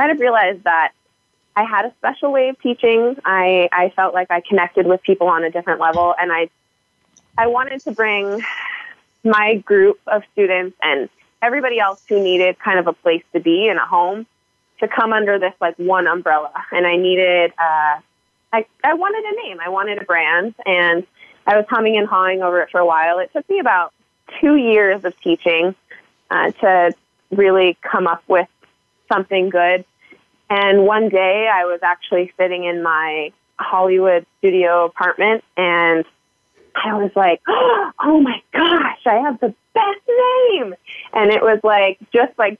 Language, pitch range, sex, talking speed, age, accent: English, 175-230 Hz, female, 175 wpm, 20-39, American